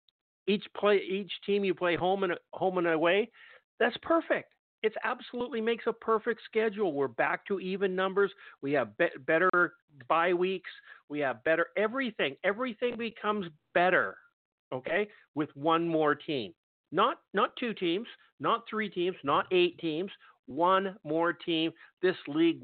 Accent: American